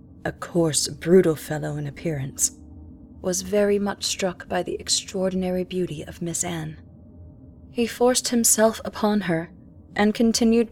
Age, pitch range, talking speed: 20-39, 160-205 Hz, 135 wpm